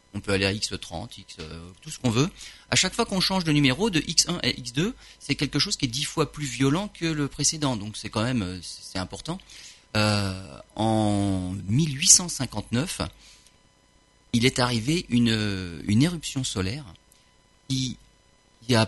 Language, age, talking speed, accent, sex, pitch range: French, 40-59, 160 wpm, French, male, 110-165 Hz